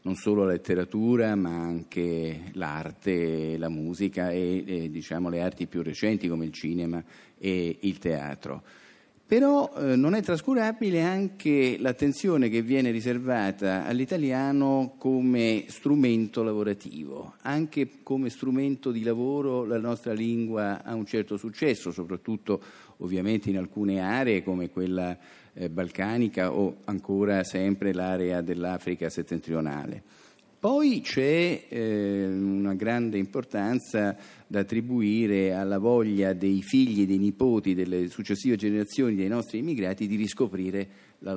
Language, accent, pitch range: Italian, native, 90-115 Hz